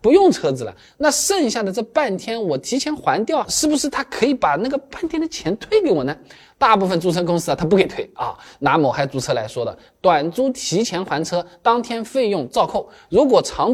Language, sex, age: Chinese, male, 20-39